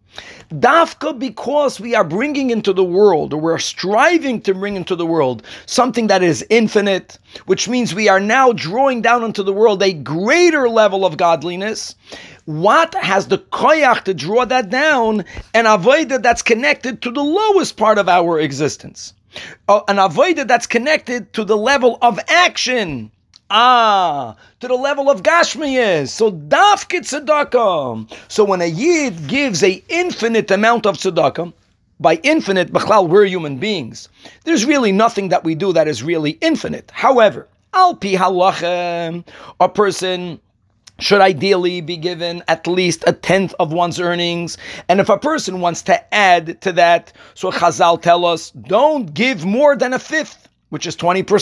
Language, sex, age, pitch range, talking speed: English, male, 40-59, 175-255 Hz, 155 wpm